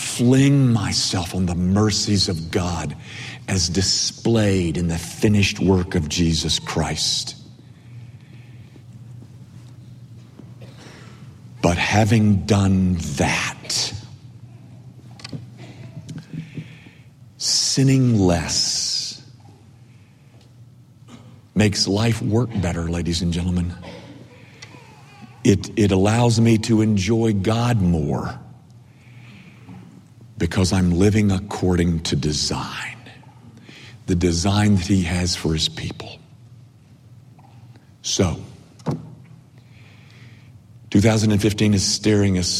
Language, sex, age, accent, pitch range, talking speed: English, male, 50-69, American, 95-125 Hz, 75 wpm